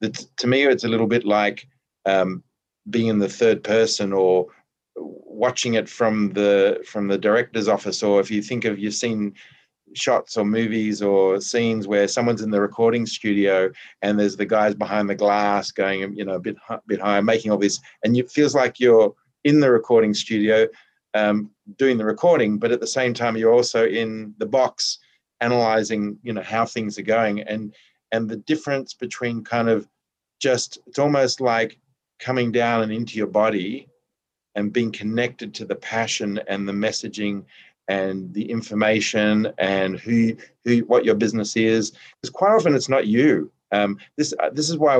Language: English